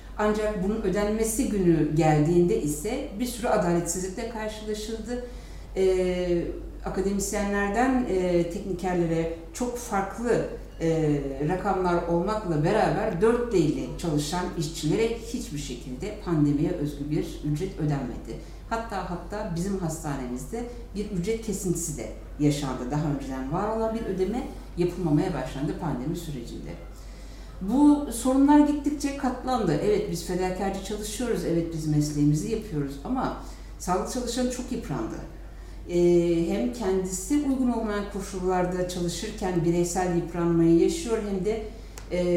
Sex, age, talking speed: female, 60-79, 110 wpm